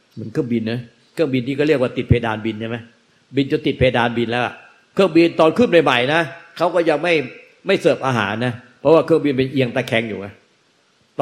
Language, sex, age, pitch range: Thai, male, 60-79, 120-160 Hz